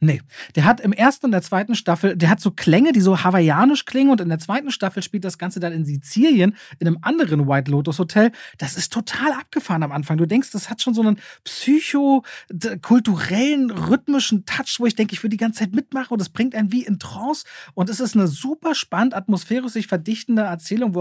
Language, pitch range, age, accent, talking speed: German, 160-215 Hz, 30-49, German, 220 wpm